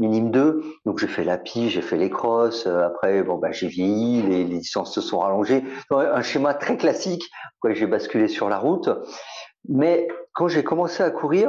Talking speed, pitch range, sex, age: 195 wpm, 110-170 Hz, male, 50-69